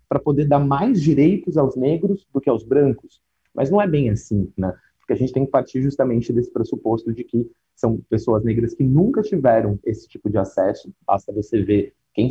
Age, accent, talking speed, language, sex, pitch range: 30-49, Brazilian, 205 wpm, Portuguese, male, 110-135 Hz